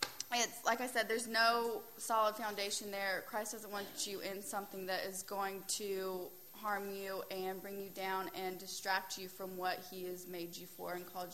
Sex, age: female, 20-39